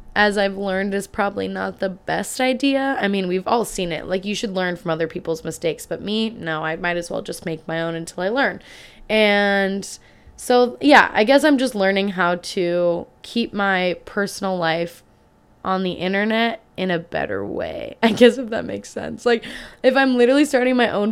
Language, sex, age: English, female, 20-39